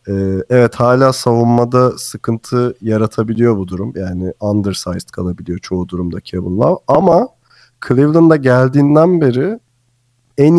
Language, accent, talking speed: Turkish, native, 115 wpm